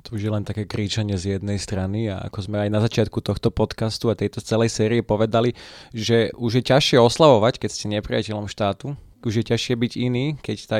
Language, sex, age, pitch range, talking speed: Slovak, male, 20-39, 105-125 Hz, 210 wpm